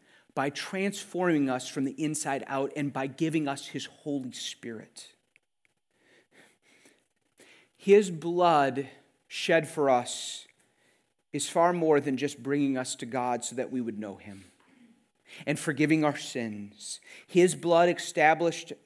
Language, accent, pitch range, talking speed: English, American, 140-180 Hz, 130 wpm